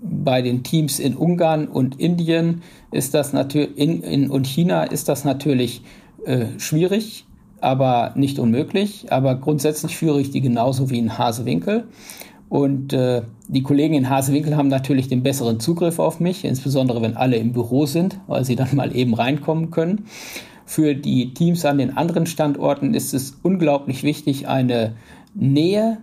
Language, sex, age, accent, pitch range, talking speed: German, male, 50-69, German, 130-165 Hz, 155 wpm